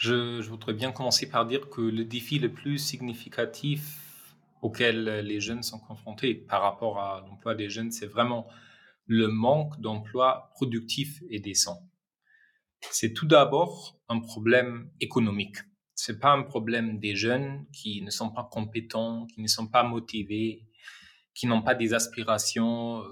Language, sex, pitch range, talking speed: French, male, 110-130 Hz, 155 wpm